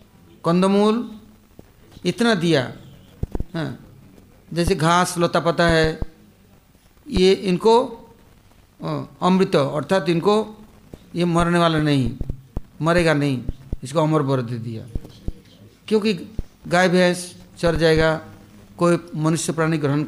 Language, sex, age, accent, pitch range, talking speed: English, male, 60-79, Indian, 130-195 Hz, 95 wpm